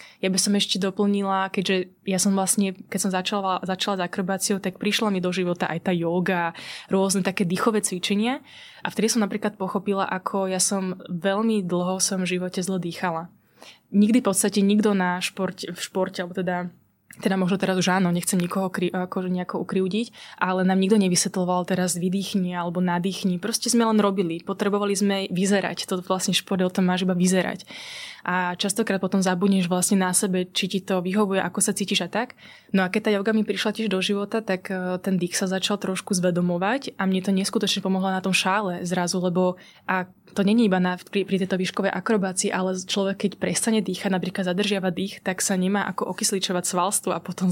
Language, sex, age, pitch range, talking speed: Slovak, female, 20-39, 185-205 Hz, 195 wpm